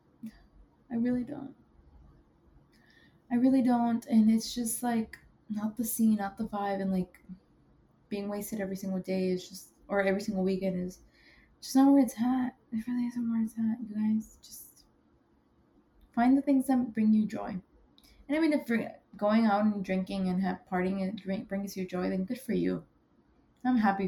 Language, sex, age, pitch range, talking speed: English, female, 20-39, 195-260 Hz, 180 wpm